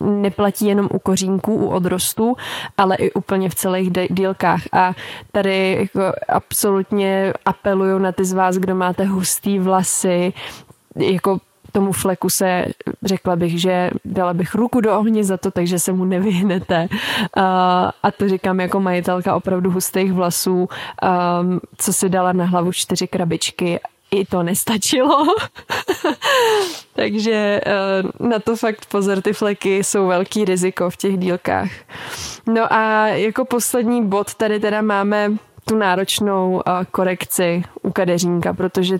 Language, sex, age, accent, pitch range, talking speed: Czech, female, 20-39, native, 185-200 Hz, 130 wpm